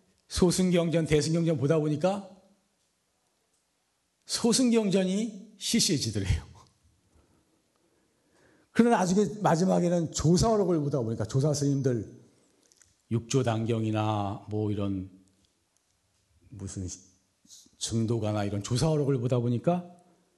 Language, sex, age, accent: Korean, male, 40-59, native